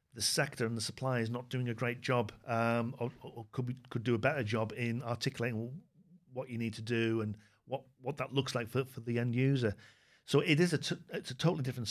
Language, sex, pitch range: English, male, 115-130 Hz